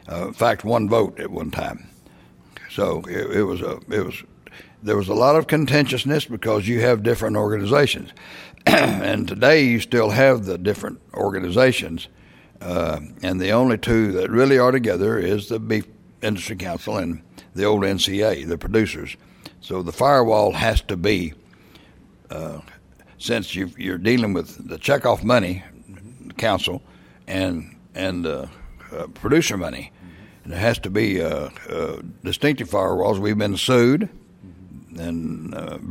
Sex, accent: male, American